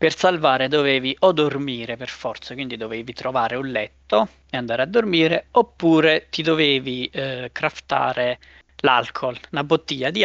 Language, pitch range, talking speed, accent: Italian, 120-150 Hz, 145 wpm, native